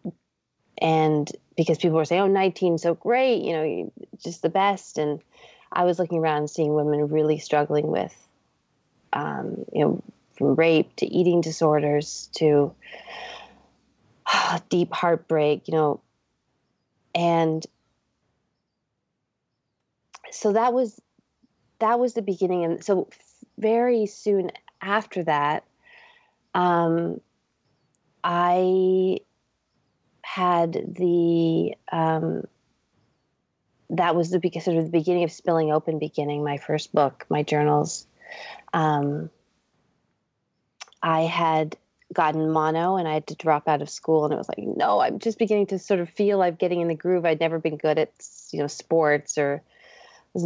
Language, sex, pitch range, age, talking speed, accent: English, female, 150-180 Hz, 30-49, 135 wpm, American